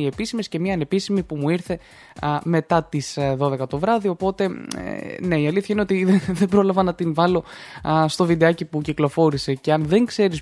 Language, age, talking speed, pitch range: Greek, 20-39, 205 wpm, 145-200 Hz